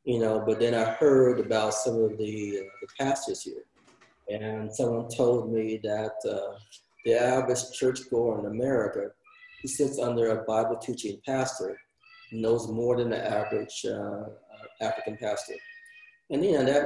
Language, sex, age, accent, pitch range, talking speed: English, male, 30-49, American, 110-130 Hz, 160 wpm